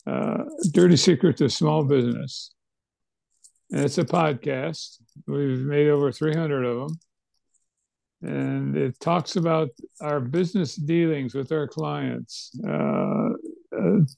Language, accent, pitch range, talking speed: English, American, 125-160 Hz, 115 wpm